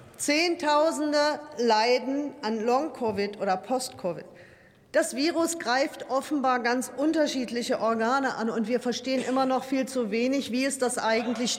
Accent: German